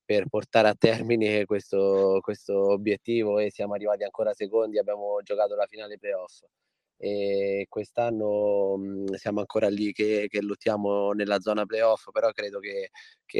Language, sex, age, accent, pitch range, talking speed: Italian, male, 20-39, native, 100-115 Hz, 150 wpm